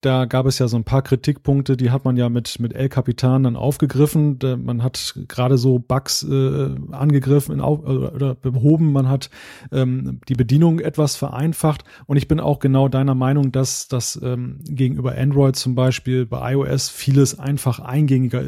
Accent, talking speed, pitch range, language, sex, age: German, 175 wpm, 130-150 Hz, German, male, 30-49